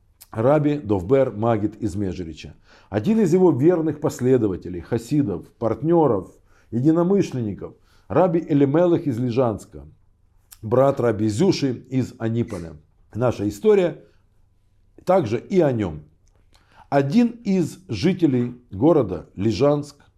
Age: 50-69